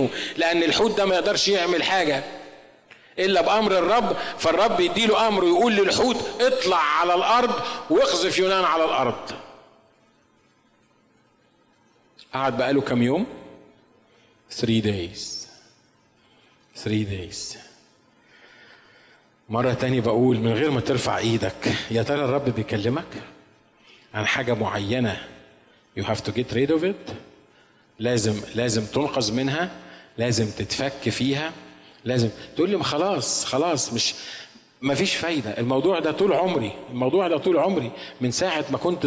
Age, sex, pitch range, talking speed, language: 40-59, male, 110-145 Hz, 125 wpm, Arabic